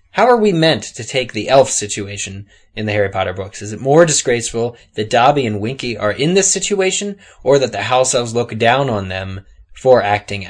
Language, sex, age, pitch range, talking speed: English, male, 20-39, 105-130 Hz, 210 wpm